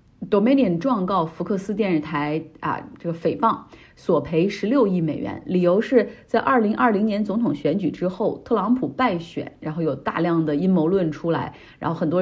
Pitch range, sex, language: 160-195 Hz, female, Chinese